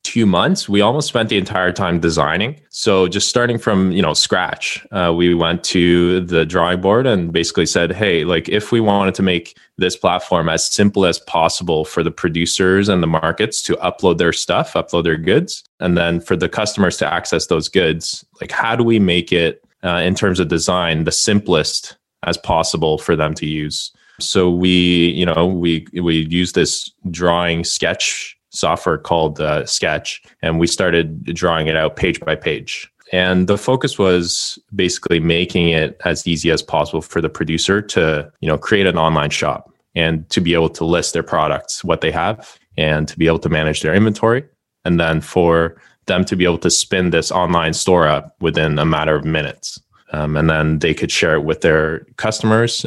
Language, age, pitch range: English, 20-39, 80-95 Hz